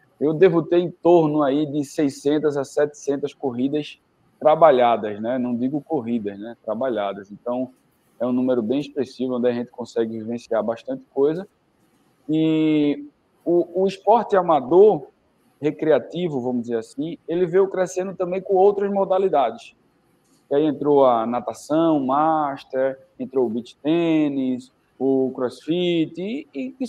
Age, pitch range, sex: 20-39, 135-190 Hz, male